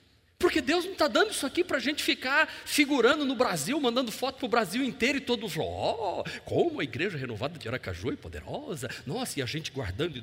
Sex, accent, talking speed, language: male, Brazilian, 210 wpm, Portuguese